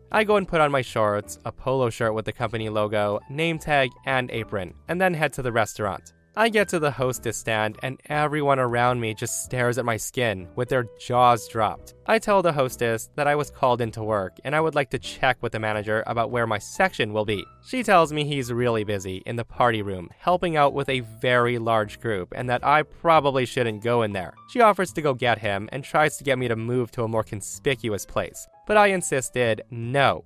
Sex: male